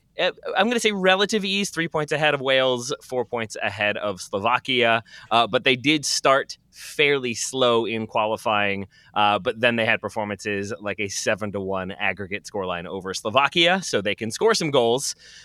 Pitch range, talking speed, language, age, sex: 105-140 Hz, 180 wpm, English, 20-39, male